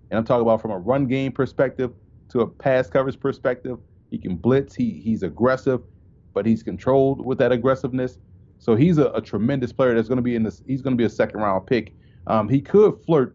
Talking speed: 225 wpm